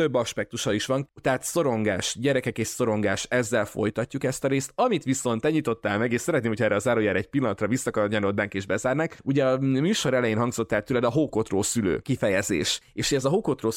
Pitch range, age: 105-130 Hz, 30-49